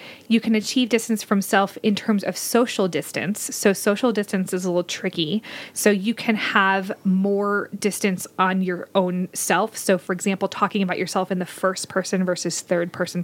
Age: 20-39